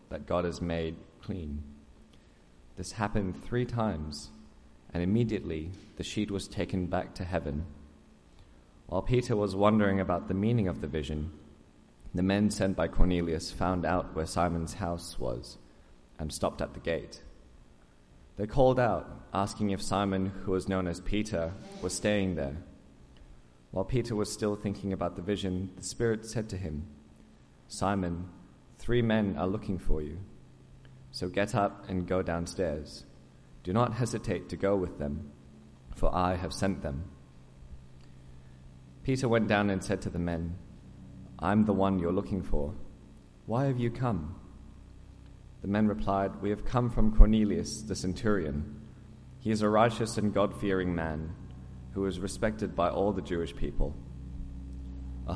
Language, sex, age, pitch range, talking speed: English, male, 20-39, 75-100 Hz, 155 wpm